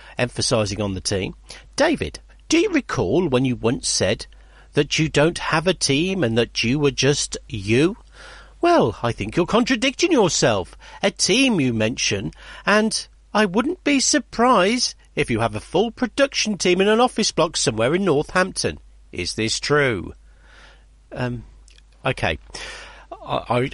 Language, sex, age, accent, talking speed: English, male, 50-69, British, 150 wpm